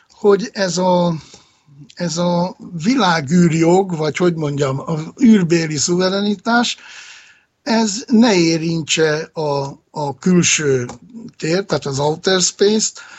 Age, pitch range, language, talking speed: 60-79, 145-185 Hz, Hungarian, 105 wpm